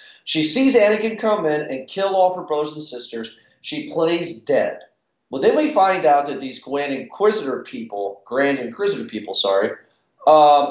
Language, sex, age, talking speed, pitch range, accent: English, male, 40-59, 170 wpm, 160-250 Hz, American